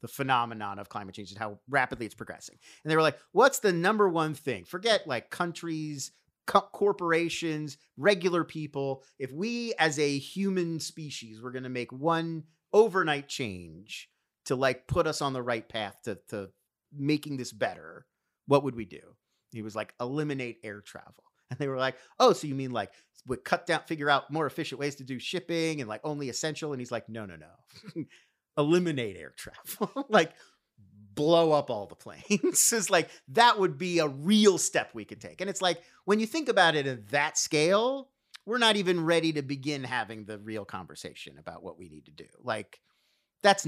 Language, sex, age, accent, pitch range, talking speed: English, male, 30-49, American, 125-175 Hz, 195 wpm